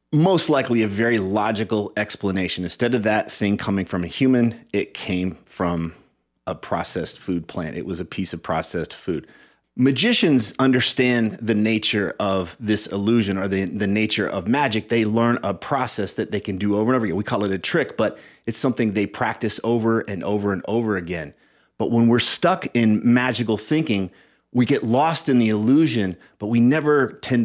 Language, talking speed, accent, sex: English, 190 wpm, American, male